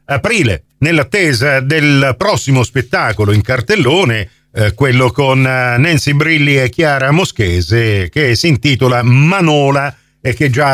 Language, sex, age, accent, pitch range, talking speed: Italian, male, 50-69, native, 130-190 Hz, 125 wpm